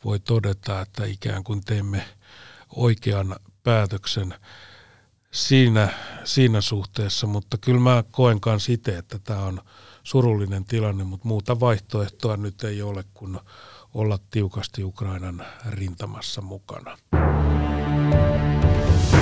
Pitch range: 100-115 Hz